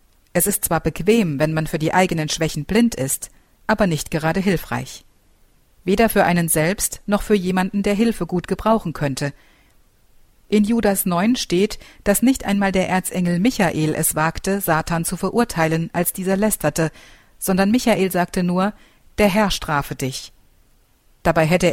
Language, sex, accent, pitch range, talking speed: German, female, German, 155-205 Hz, 155 wpm